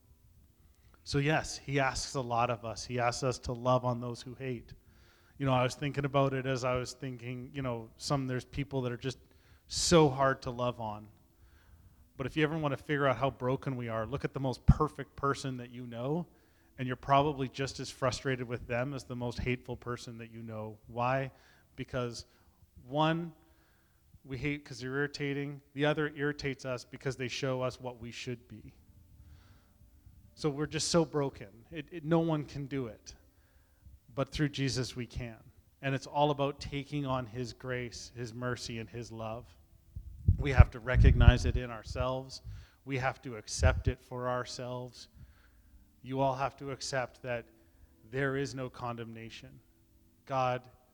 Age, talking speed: 30-49, 180 wpm